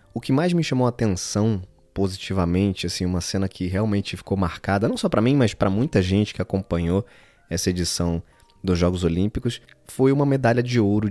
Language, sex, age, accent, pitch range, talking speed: Portuguese, male, 20-39, Brazilian, 95-120 Hz, 185 wpm